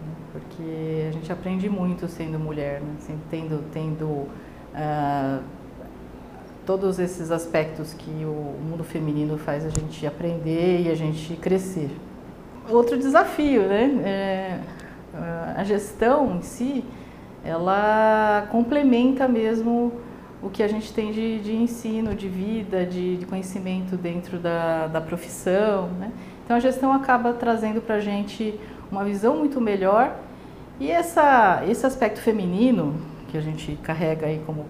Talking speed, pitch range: 135 wpm, 165-230 Hz